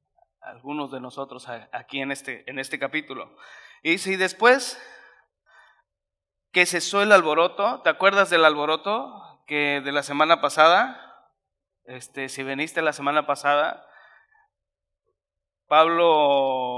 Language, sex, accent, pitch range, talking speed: Spanish, male, Mexican, 140-165 Hz, 115 wpm